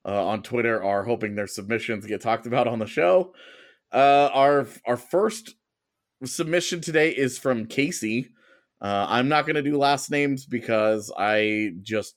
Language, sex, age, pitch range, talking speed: English, male, 30-49, 110-145 Hz, 165 wpm